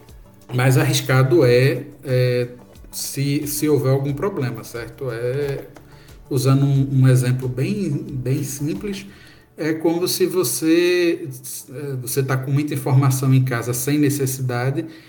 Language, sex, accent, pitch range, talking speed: Portuguese, male, Brazilian, 130-165 Hz, 125 wpm